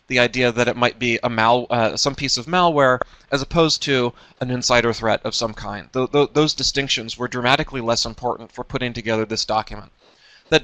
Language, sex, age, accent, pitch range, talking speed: English, male, 30-49, American, 115-140 Hz, 205 wpm